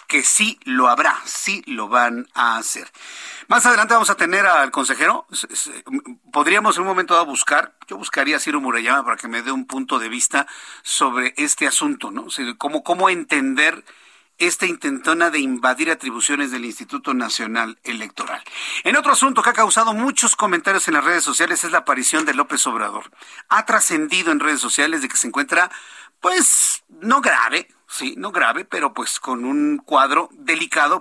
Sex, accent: male, Mexican